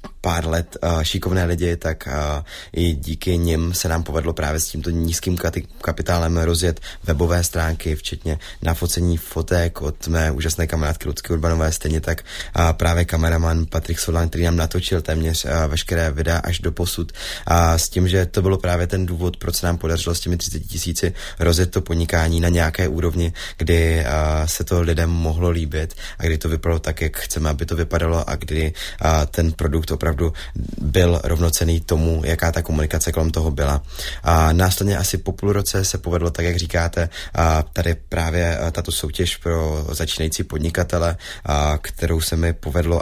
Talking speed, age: 175 wpm, 20-39